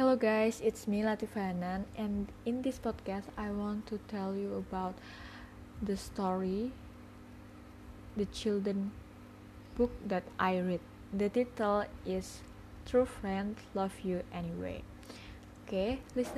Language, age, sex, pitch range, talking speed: English, 20-39, female, 185-215 Hz, 120 wpm